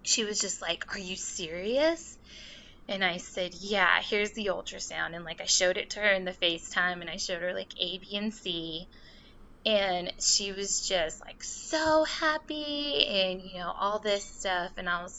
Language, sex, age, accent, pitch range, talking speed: English, female, 20-39, American, 180-230 Hz, 195 wpm